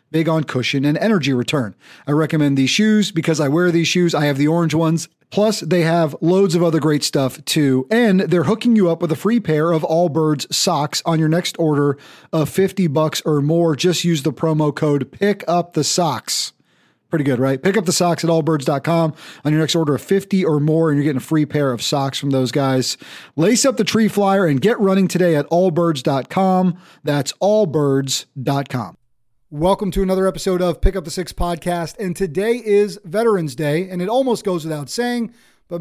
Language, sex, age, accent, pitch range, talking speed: English, male, 40-59, American, 150-190 Hz, 205 wpm